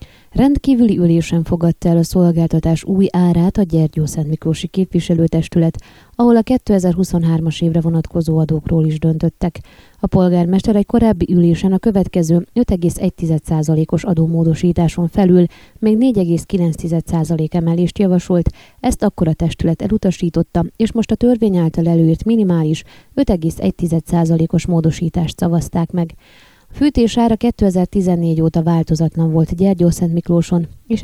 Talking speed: 110 wpm